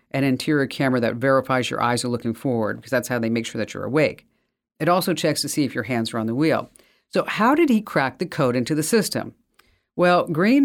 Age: 50-69